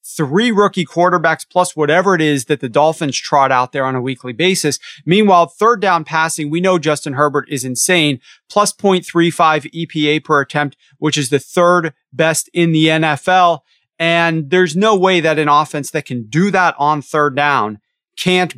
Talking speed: 180 wpm